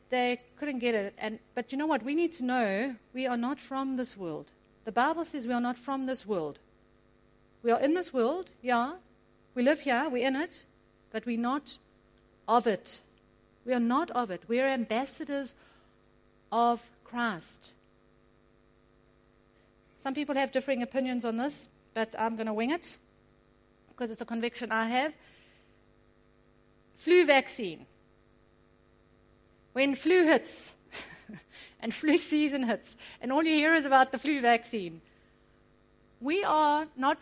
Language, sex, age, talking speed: English, female, 40-59, 155 wpm